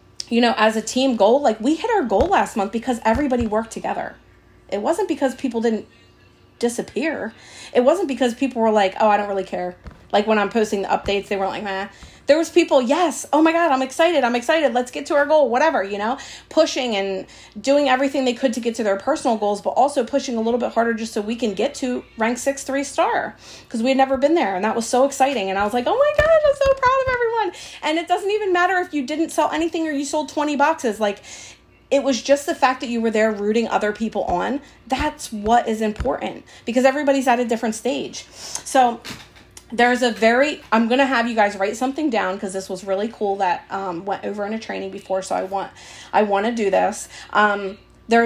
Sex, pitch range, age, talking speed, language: female, 205-275 Hz, 30-49, 235 wpm, English